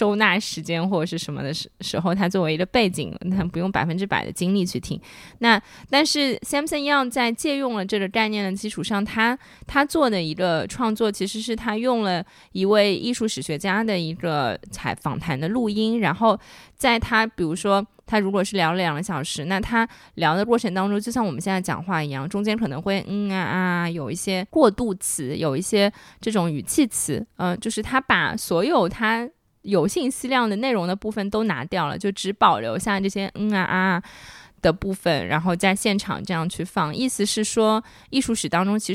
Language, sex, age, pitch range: Chinese, female, 20-39, 175-220 Hz